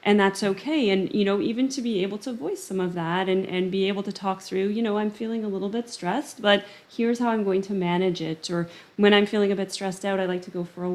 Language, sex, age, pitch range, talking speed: English, female, 30-49, 175-200 Hz, 285 wpm